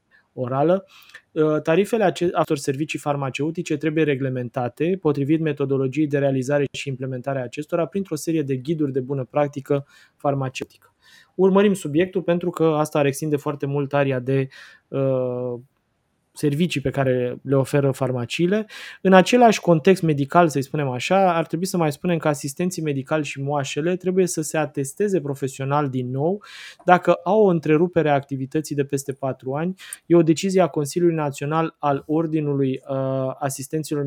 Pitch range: 140-175 Hz